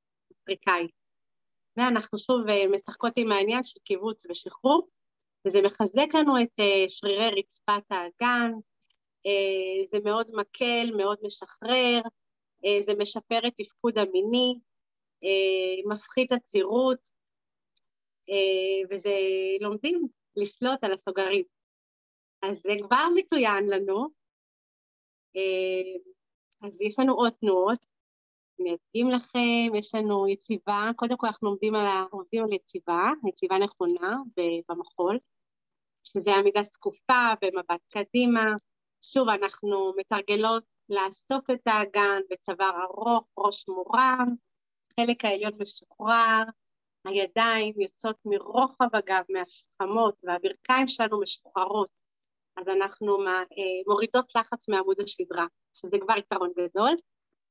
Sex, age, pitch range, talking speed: female, 30-49, 195-235 Hz, 95 wpm